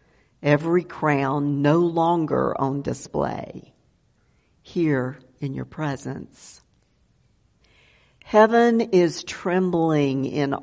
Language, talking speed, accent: English, 80 wpm, American